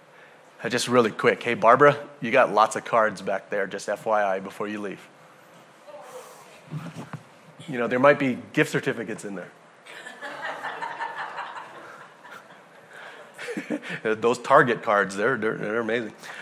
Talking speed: 120 wpm